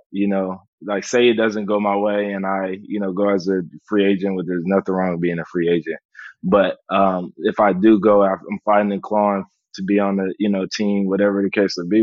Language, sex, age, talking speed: English, male, 20-39, 250 wpm